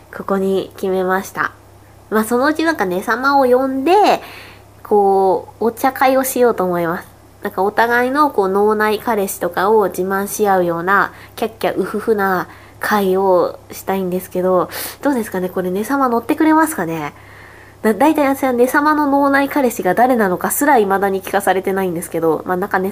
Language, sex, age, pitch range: Japanese, female, 20-39, 180-225 Hz